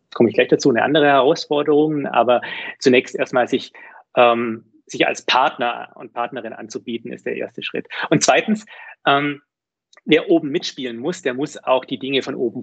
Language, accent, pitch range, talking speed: German, German, 130-190 Hz, 170 wpm